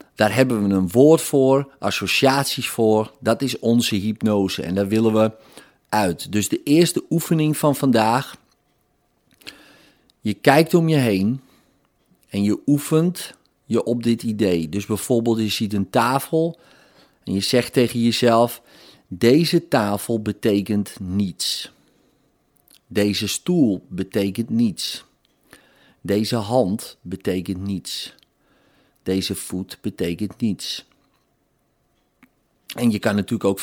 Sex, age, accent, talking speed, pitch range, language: male, 40-59, Dutch, 120 wpm, 105-130 Hz, Dutch